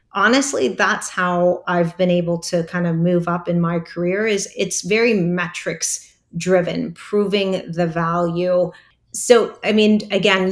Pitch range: 175-195 Hz